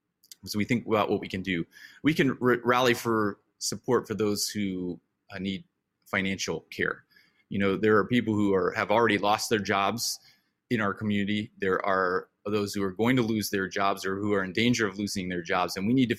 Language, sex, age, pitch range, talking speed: English, male, 30-49, 95-110 Hz, 220 wpm